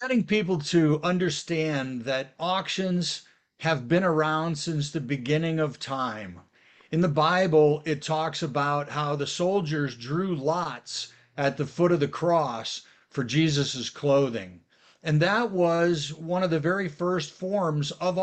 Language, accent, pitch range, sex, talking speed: English, American, 145-180 Hz, male, 145 wpm